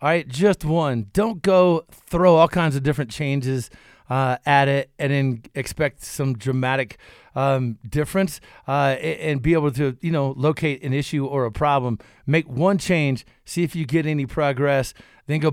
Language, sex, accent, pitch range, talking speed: English, male, American, 135-165 Hz, 180 wpm